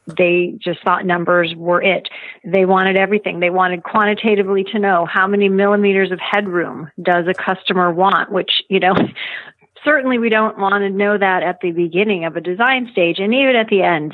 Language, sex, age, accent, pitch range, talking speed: English, female, 40-59, American, 175-200 Hz, 190 wpm